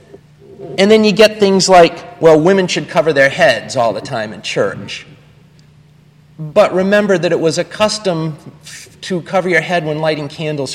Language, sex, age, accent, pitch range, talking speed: English, male, 40-59, American, 155-205 Hz, 180 wpm